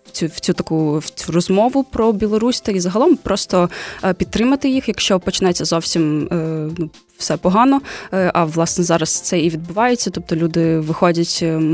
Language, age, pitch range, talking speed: Ukrainian, 20-39, 165-190 Hz, 170 wpm